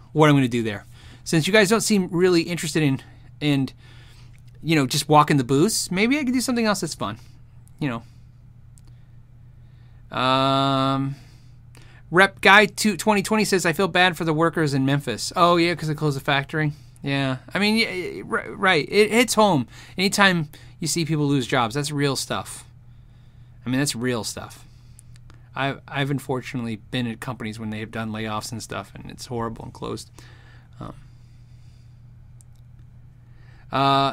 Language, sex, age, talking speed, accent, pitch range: English, male, 30-49, 165 wpm, American, 120-165 Hz